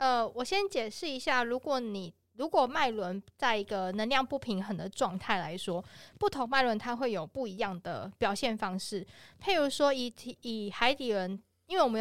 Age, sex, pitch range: 20-39, female, 200-260 Hz